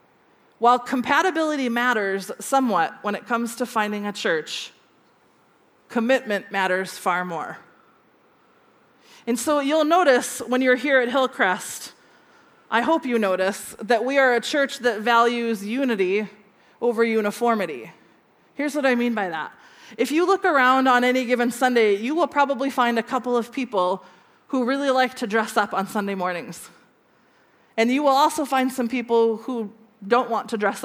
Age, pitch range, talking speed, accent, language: 20-39, 215-265 Hz, 160 wpm, American, English